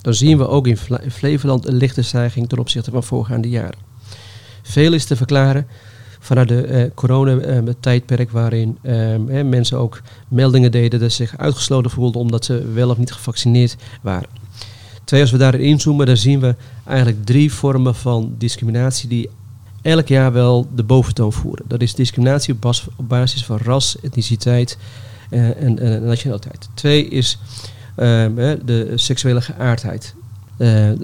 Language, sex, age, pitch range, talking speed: Dutch, male, 40-59, 115-130 Hz, 155 wpm